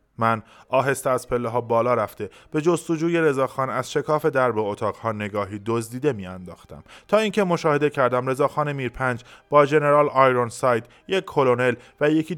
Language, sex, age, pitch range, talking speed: Persian, male, 20-39, 110-145 Hz, 150 wpm